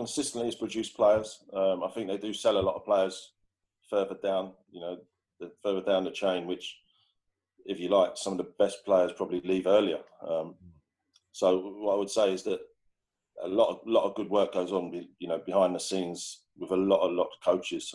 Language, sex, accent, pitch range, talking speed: English, male, British, 95-130 Hz, 210 wpm